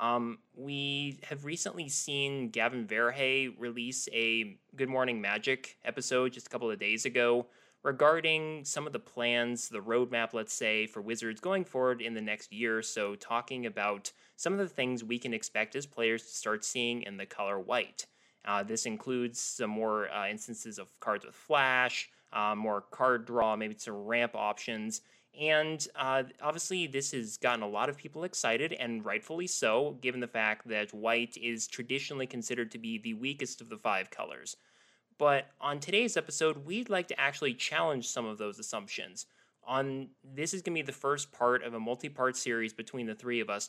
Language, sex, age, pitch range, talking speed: English, male, 20-39, 115-140 Hz, 185 wpm